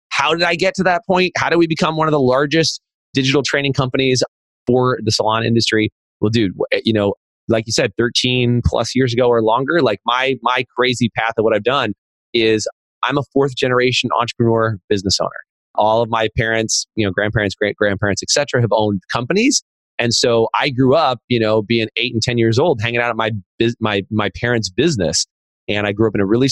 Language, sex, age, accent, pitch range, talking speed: English, male, 30-49, American, 100-125 Hz, 210 wpm